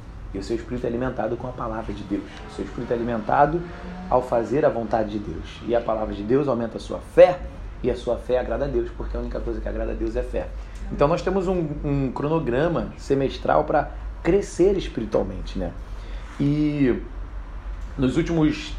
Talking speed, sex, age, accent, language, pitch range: 200 wpm, male, 30-49, Brazilian, Portuguese, 115-165 Hz